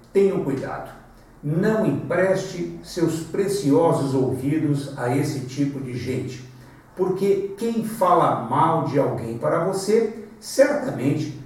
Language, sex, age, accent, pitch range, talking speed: Portuguese, male, 60-79, Brazilian, 135-180 Hz, 110 wpm